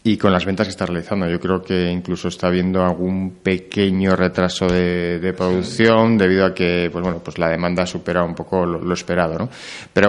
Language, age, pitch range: Spanish, 30-49, 90-105 Hz